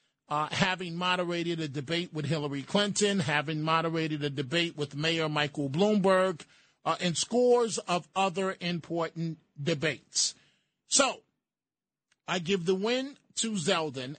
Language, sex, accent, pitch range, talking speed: English, male, American, 165-215 Hz, 125 wpm